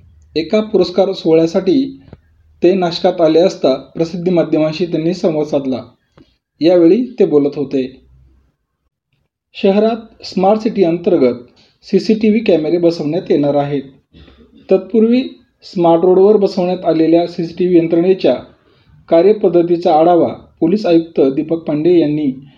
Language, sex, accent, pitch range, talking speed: Marathi, male, native, 145-195 Hz, 105 wpm